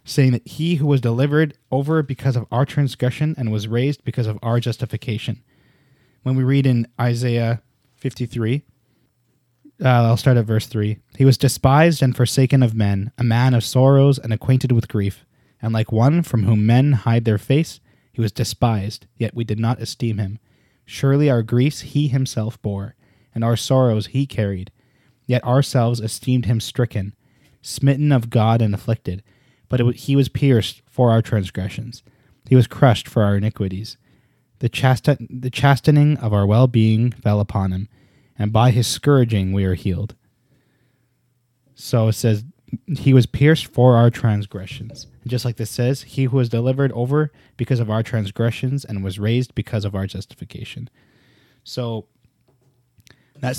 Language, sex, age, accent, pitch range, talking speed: English, male, 20-39, American, 110-135 Hz, 160 wpm